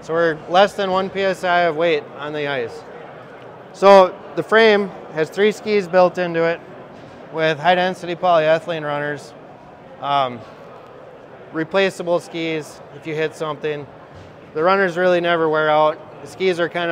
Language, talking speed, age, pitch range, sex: English, 150 wpm, 20-39, 155-185 Hz, male